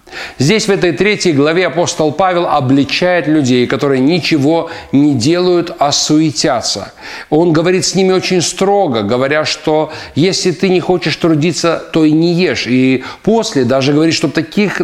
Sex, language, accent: male, Russian, native